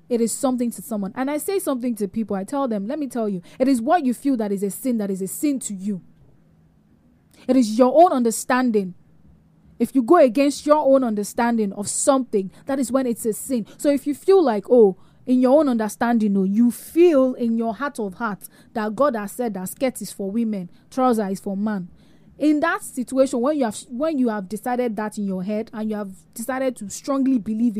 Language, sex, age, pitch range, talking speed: English, female, 20-39, 195-255 Hz, 225 wpm